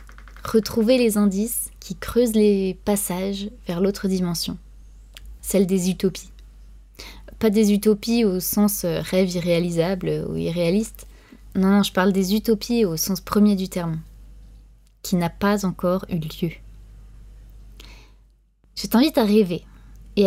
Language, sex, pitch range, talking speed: French, female, 155-205 Hz, 130 wpm